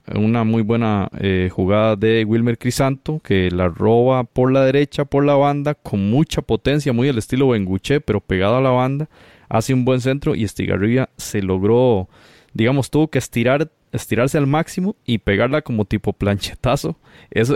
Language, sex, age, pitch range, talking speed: Spanish, male, 20-39, 100-125 Hz, 170 wpm